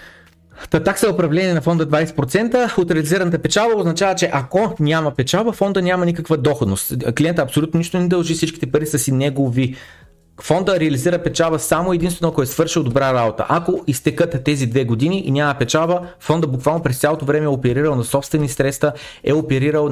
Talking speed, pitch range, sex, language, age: 175 wpm, 130-170 Hz, male, Bulgarian, 30-49